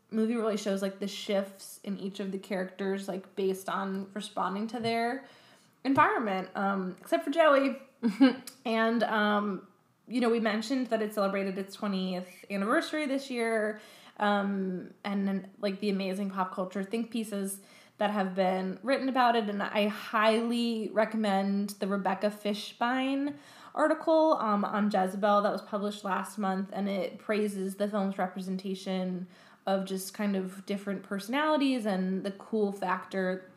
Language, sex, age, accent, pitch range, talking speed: English, female, 20-39, American, 190-220 Hz, 150 wpm